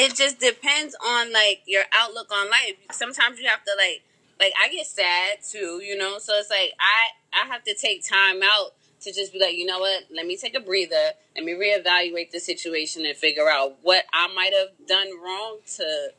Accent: American